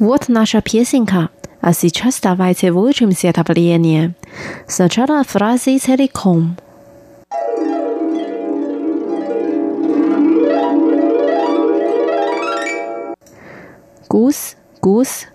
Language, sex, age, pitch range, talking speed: Russian, female, 30-49, 185-260 Hz, 45 wpm